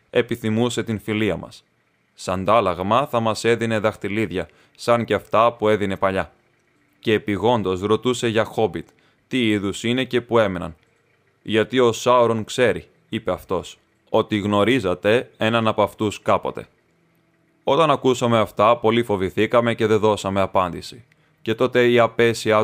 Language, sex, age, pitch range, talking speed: Greek, male, 20-39, 105-120 Hz, 135 wpm